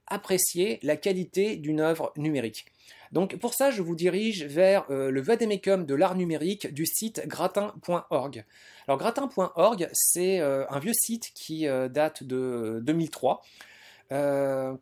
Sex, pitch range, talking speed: male, 135-185 Hz, 140 wpm